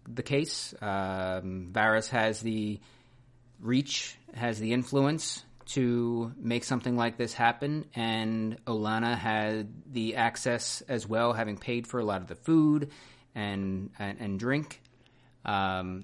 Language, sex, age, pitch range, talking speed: English, male, 30-49, 105-125 Hz, 135 wpm